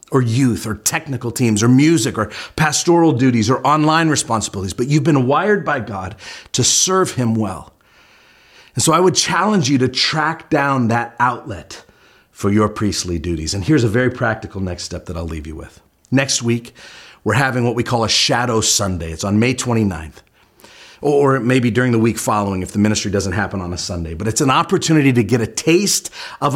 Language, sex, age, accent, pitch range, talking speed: English, male, 40-59, American, 105-135 Hz, 195 wpm